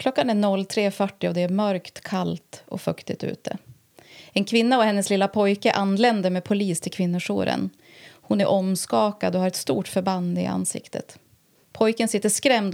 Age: 30-49